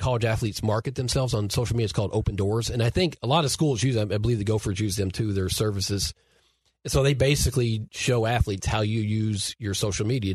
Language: English